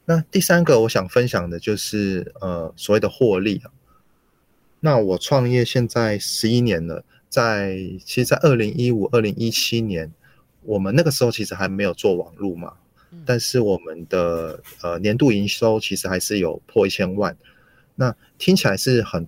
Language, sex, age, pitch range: Chinese, male, 20-39, 95-125 Hz